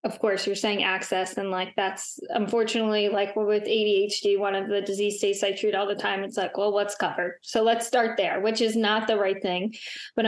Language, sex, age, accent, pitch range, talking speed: English, female, 10-29, American, 200-225 Hz, 220 wpm